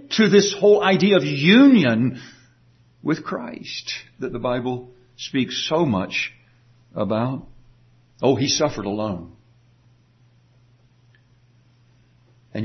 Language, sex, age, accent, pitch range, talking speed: English, male, 60-79, American, 120-135 Hz, 95 wpm